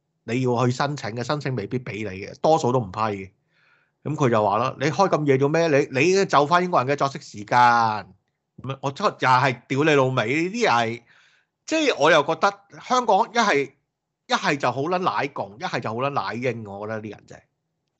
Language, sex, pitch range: Chinese, male, 120-160 Hz